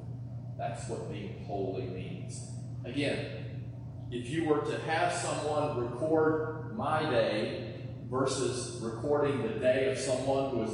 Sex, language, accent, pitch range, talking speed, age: male, English, American, 125-155 Hz, 130 wpm, 40-59